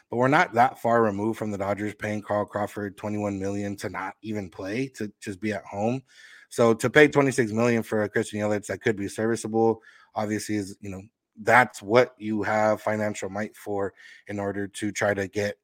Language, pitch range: English, 100-110 Hz